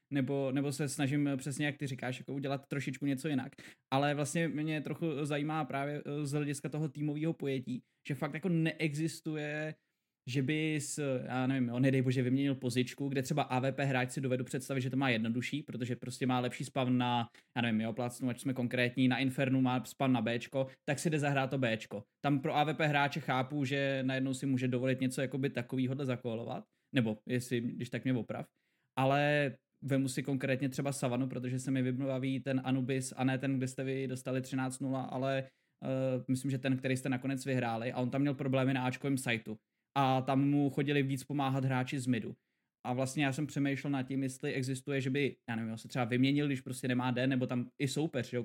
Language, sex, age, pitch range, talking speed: Czech, male, 20-39, 125-140 Hz, 205 wpm